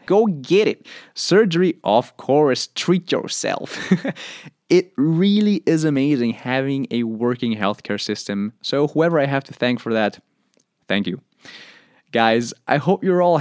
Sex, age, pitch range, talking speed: male, 20-39, 115-160 Hz, 145 wpm